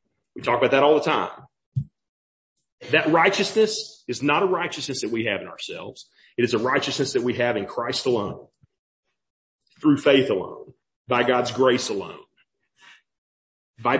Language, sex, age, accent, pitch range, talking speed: English, male, 40-59, American, 130-175 Hz, 155 wpm